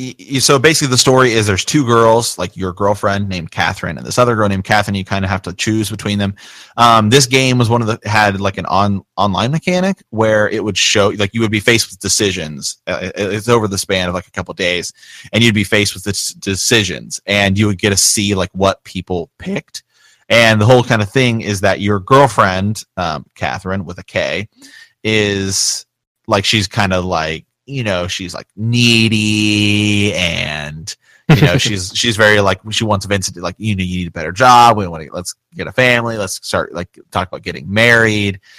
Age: 30-49